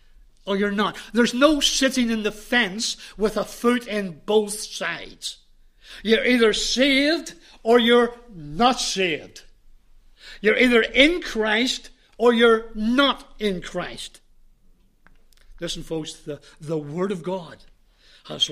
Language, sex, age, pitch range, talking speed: English, male, 60-79, 175-220 Hz, 125 wpm